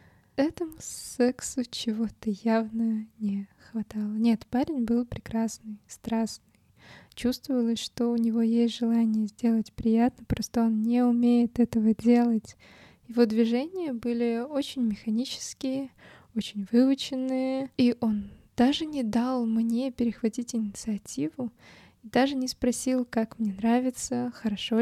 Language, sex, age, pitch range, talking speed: Russian, female, 20-39, 220-250 Hz, 115 wpm